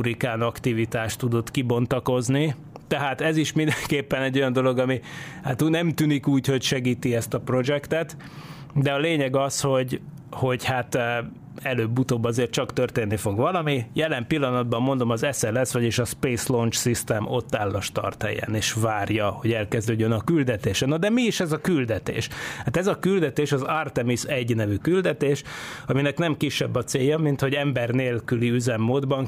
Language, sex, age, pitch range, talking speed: Hungarian, male, 30-49, 120-145 Hz, 160 wpm